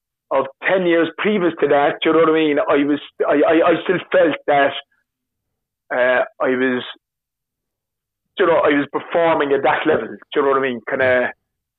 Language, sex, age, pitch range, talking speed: English, male, 30-49, 140-165 Hz, 200 wpm